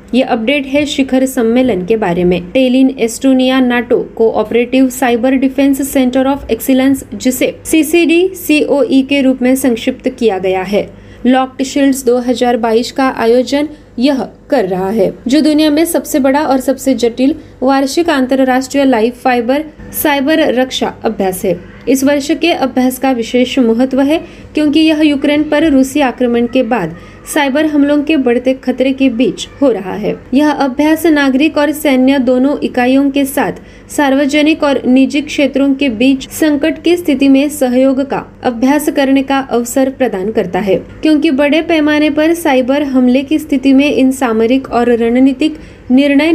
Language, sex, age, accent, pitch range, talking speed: Marathi, female, 20-39, native, 250-290 Hz, 160 wpm